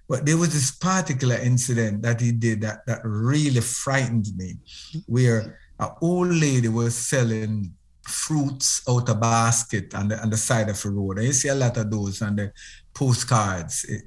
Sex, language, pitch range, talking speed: male, English, 110-140 Hz, 180 wpm